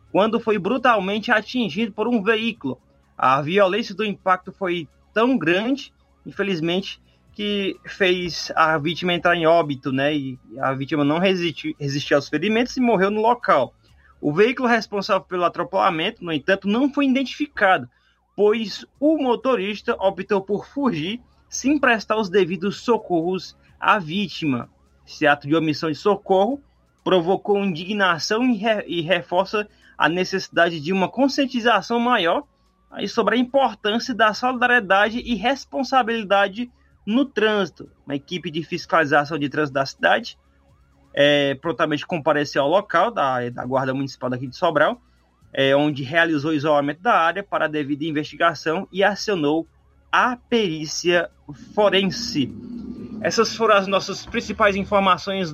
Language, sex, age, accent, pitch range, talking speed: Portuguese, male, 20-39, Brazilian, 160-220 Hz, 135 wpm